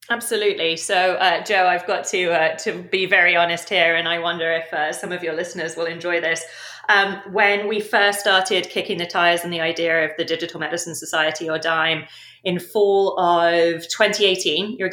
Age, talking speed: 30-49, 195 wpm